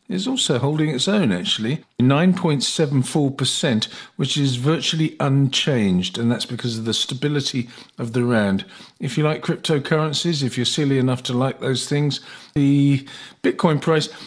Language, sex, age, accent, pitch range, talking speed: English, male, 50-69, British, 120-160 Hz, 145 wpm